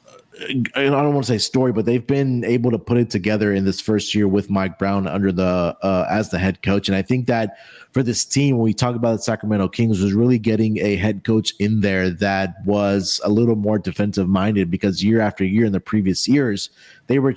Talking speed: 230 wpm